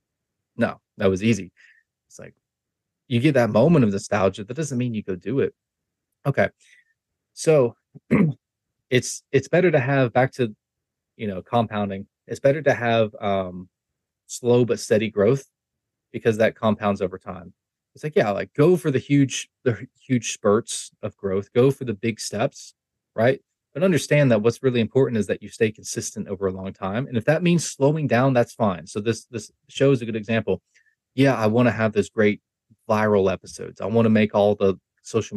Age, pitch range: 20-39, 105-135 Hz